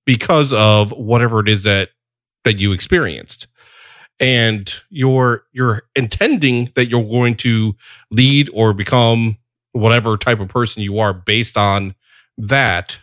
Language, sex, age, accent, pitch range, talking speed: English, male, 30-49, American, 100-120 Hz, 135 wpm